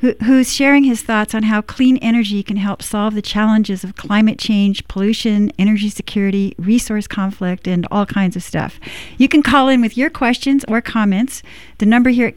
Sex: female